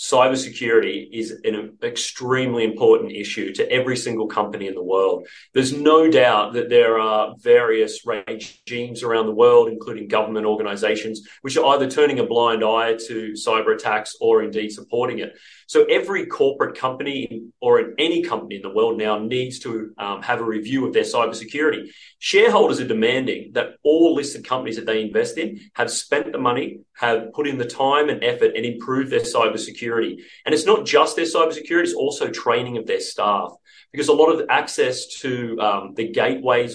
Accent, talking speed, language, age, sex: Australian, 180 wpm, English, 30-49, male